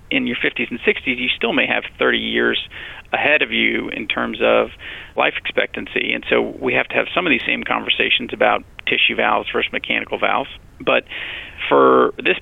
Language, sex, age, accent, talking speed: English, male, 40-59, American, 190 wpm